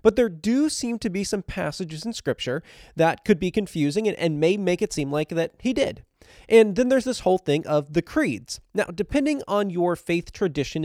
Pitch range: 155-215 Hz